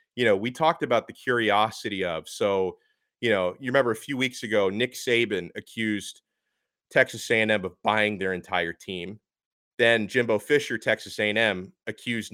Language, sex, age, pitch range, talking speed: English, male, 30-49, 115-180 Hz, 160 wpm